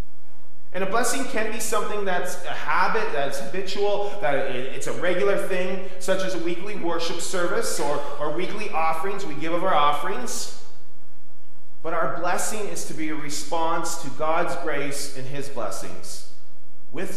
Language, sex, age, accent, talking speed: English, male, 30-49, American, 160 wpm